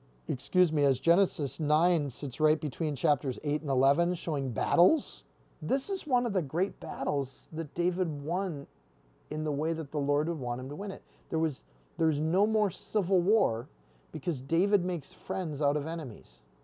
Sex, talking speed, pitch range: male, 180 wpm, 130-170 Hz